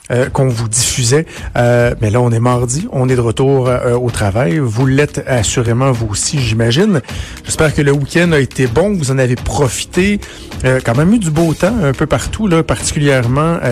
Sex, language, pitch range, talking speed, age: male, French, 120-150 Hz, 195 wpm, 60-79